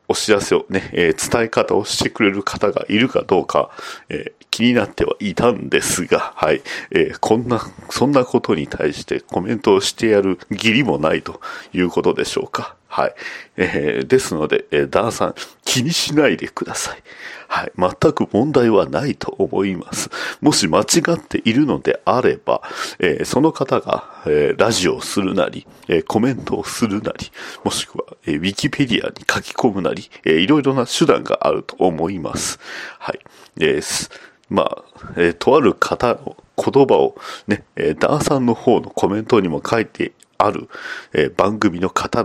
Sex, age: male, 40-59